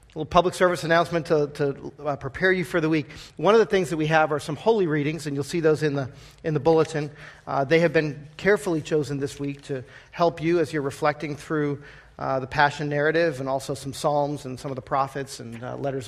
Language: English